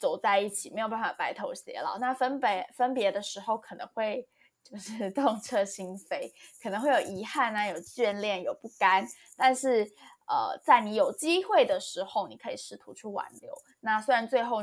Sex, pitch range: female, 195-260 Hz